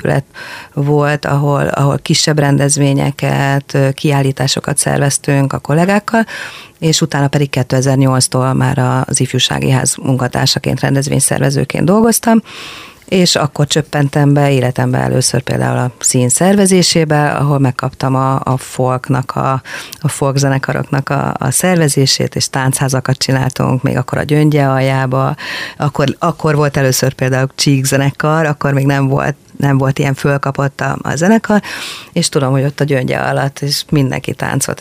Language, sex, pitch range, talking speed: Hungarian, female, 130-150 Hz, 130 wpm